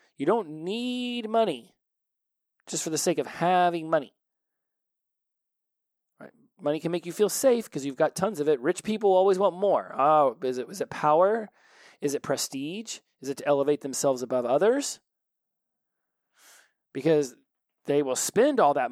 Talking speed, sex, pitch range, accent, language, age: 150 wpm, male, 130-180 Hz, American, English, 30-49